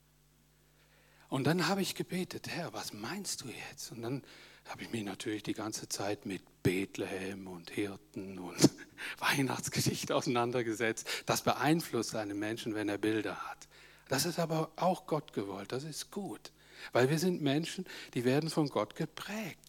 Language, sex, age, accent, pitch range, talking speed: German, male, 60-79, German, 130-185 Hz, 160 wpm